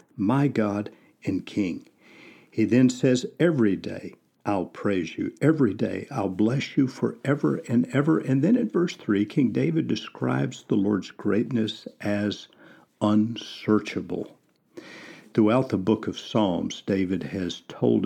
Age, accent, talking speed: 50-69, American, 135 wpm